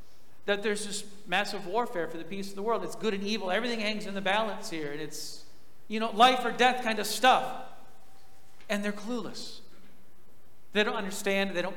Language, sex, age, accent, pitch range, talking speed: English, male, 40-59, American, 180-225 Hz, 200 wpm